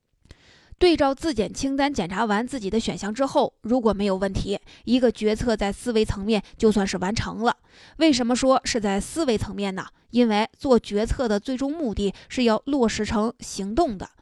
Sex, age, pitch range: female, 20-39, 205-255 Hz